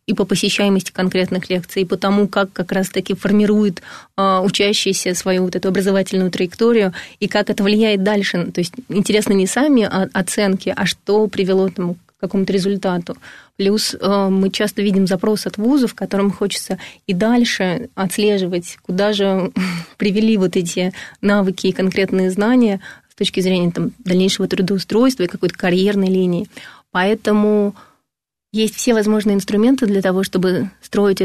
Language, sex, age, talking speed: Russian, female, 20-39, 145 wpm